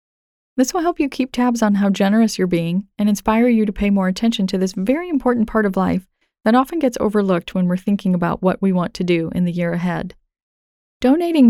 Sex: female